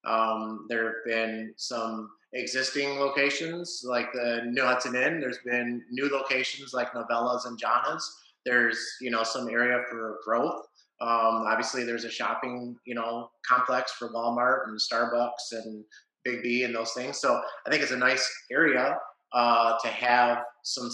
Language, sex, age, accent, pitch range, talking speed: English, male, 30-49, American, 115-125 Hz, 160 wpm